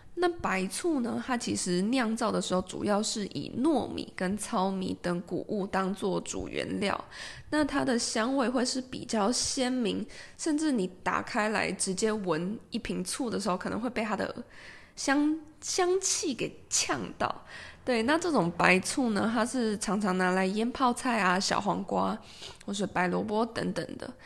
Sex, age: female, 20-39